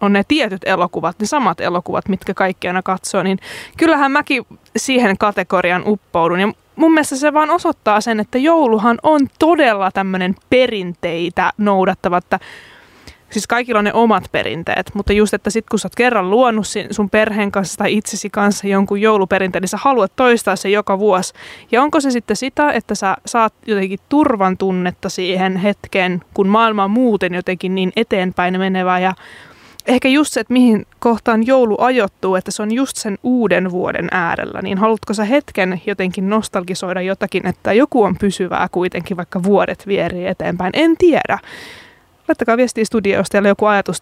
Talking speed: 170 wpm